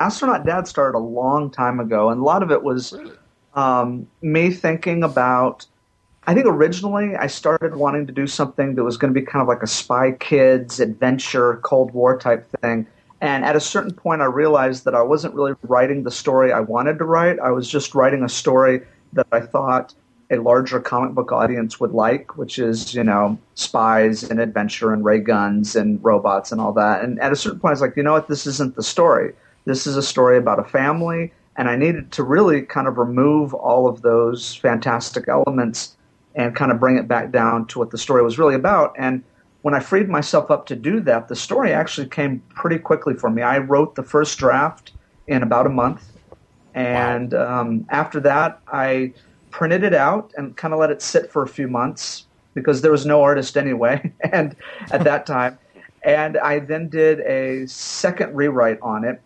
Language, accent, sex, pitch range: English, American, male, 120-150 Hz